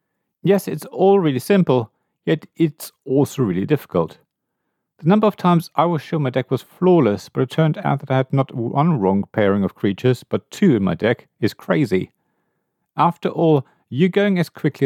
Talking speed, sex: 190 wpm, male